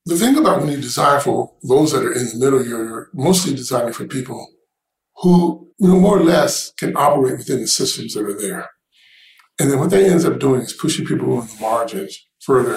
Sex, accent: male, American